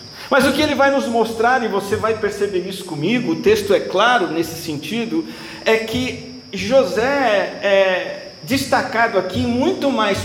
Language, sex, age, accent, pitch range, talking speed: Portuguese, male, 50-69, Brazilian, 150-230 Hz, 160 wpm